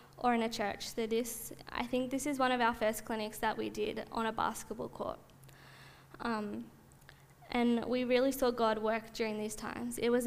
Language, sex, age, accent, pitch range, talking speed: English, female, 10-29, Australian, 215-245 Hz, 200 wpm